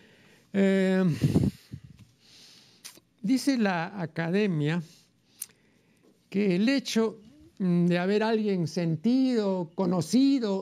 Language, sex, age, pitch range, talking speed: Spanish, male, 60-79, 160-210 Hz, 70 wpm